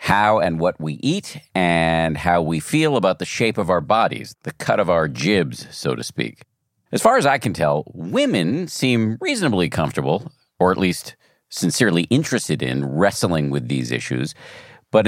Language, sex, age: English, male, 50-69